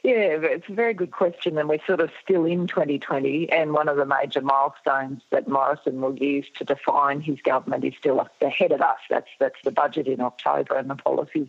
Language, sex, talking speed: English, female, 215 wpm